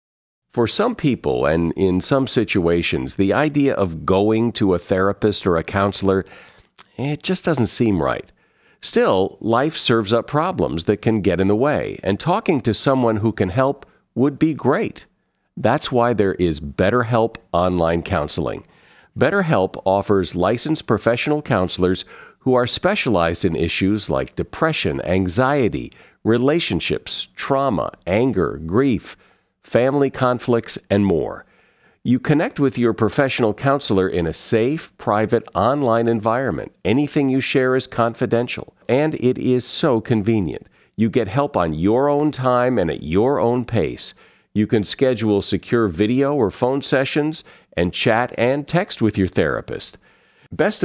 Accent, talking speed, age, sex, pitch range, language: American, 145 wpm, 50-69, male, 100-135 Hz, English